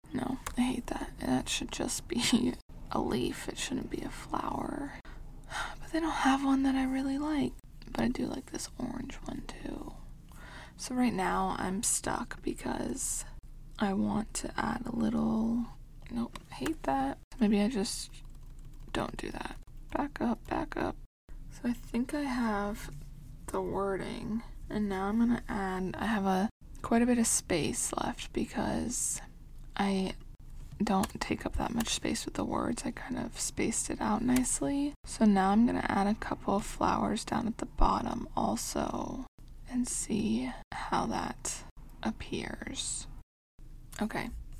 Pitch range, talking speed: 195-245 Hz, 160 wpm